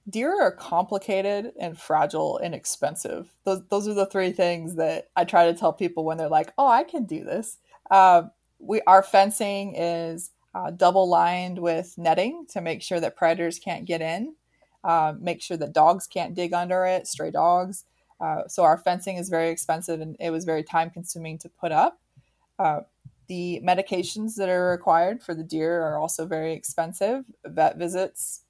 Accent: American